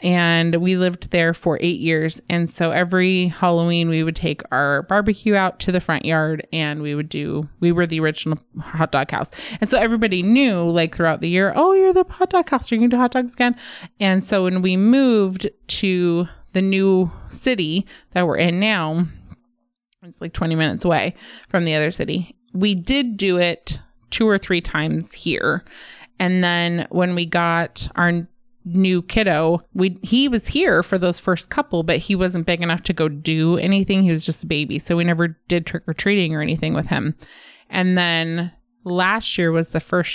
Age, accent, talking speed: 20-39, American, 195 wpm